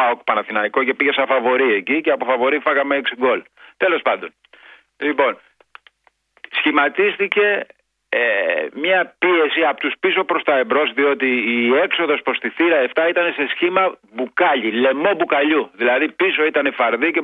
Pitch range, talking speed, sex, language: 135-160 Hz, 155 wpm, male, Greek